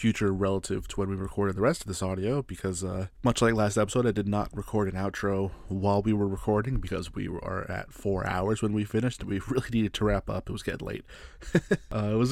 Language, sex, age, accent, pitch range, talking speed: English, male, 20-39, American, 95-120 Hz, 245 wpm